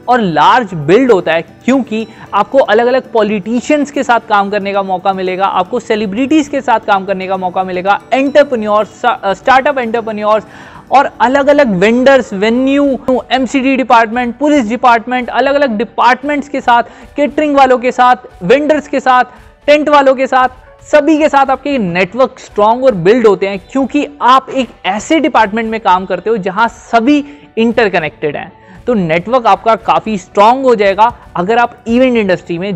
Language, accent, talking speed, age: Hindi, native, 165 wpm, 20-39